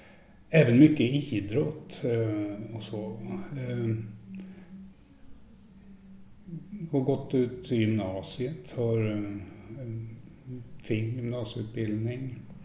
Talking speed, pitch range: 70 wpm, 105-115 Hz